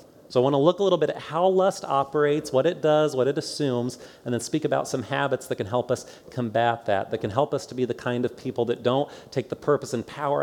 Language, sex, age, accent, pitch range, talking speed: English, male, 30-49, American, 120-150 Hz, 270 wpm